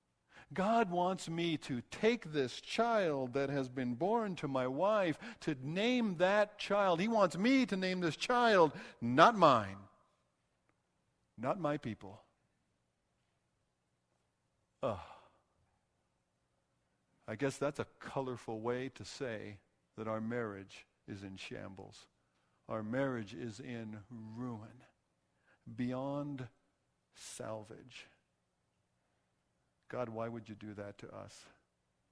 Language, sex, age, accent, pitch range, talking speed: English, male, 60-79, American, 95-150 Hz, 110 wpm